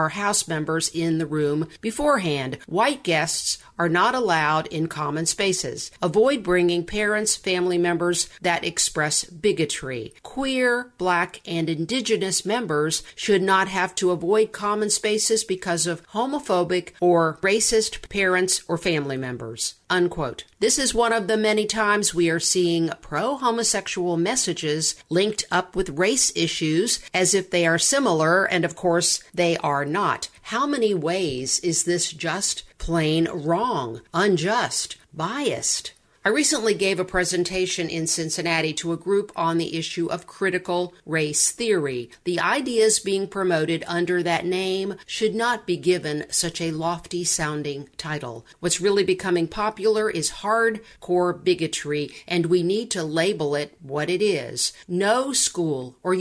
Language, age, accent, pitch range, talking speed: English, 50-69, American, 165-200 Hz, 145 wpm